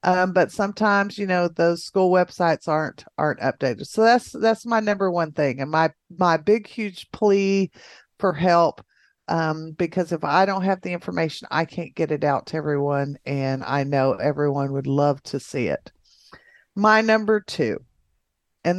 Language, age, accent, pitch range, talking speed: English, 50-69, American, 140-190 Hz, 170 wpm